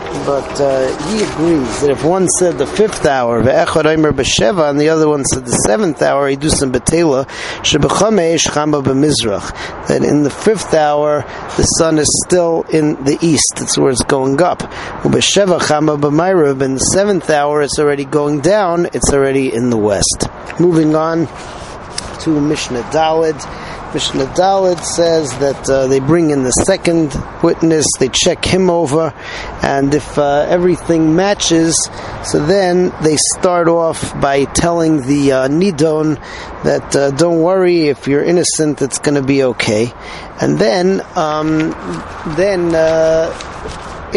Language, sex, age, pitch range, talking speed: English, male, 40-59, 140-165 Hz, 135 wpm